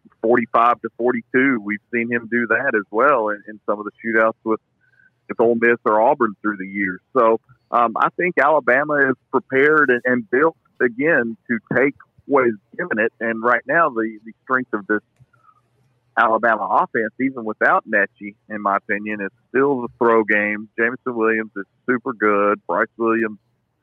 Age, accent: 50-69, American